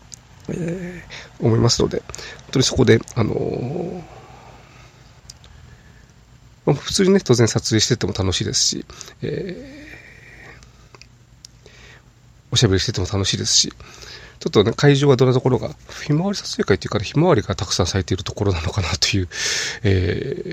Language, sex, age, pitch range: Japanese, male, 40-59, 105-130 Hz